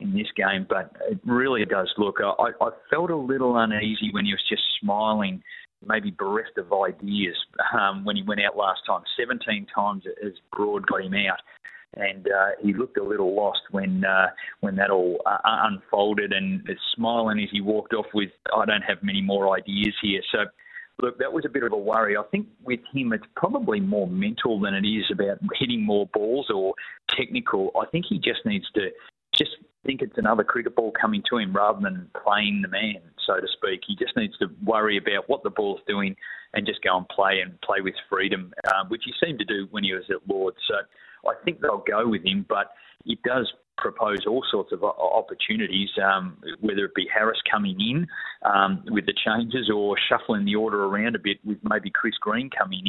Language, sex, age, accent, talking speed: English, male, 30-49, Australian, 210 wpm